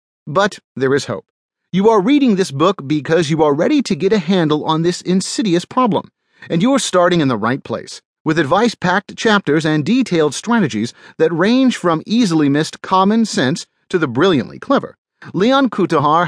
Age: 40-59